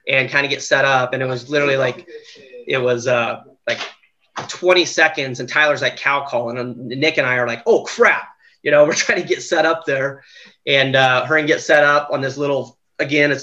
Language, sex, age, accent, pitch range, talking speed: English, male, 20-39, American, 130-155 Hz, 230 wpm